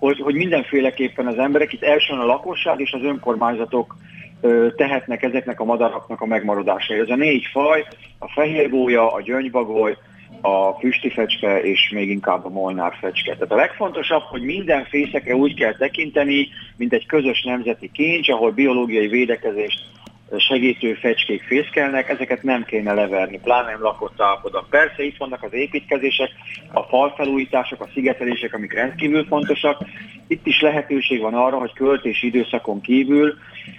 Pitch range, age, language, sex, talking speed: 115-145 Hz, 30-49, Hungarian, male, 150 wpm